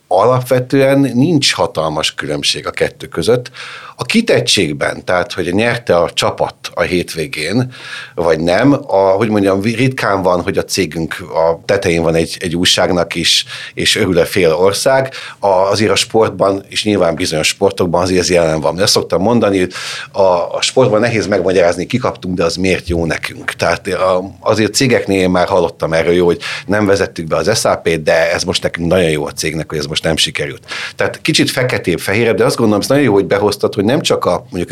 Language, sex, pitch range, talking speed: Hungarian, male, 90-130 Hz, 185 wpm